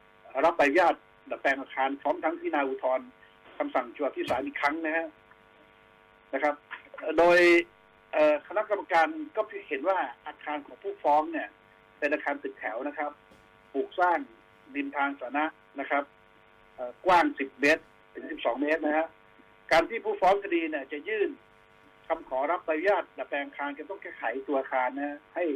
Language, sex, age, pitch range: Thai, male, 60-79, 135-195 Hz